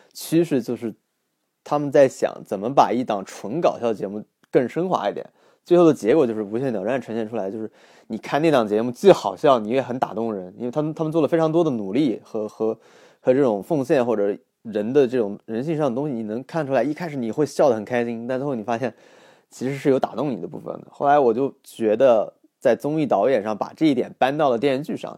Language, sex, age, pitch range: Chinese, male, 20-39, 110-155 Hz